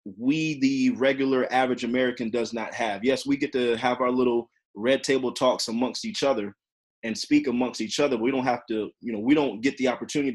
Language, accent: English, American